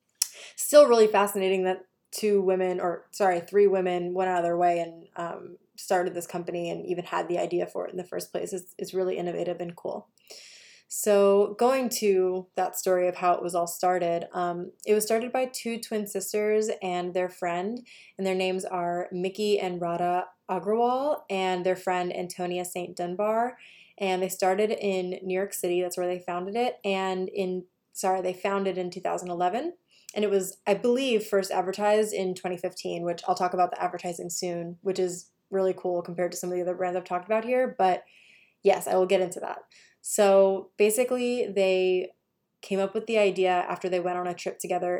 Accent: American